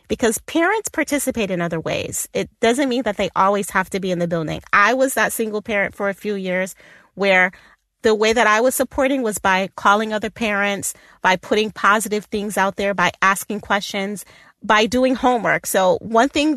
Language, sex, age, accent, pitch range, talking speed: English, female, 30-49, American, 195-235 Hz, 195 wpm